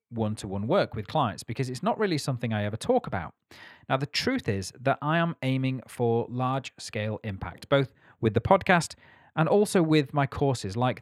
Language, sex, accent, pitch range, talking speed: English, male, British, 110-155 Hz, 200 wpm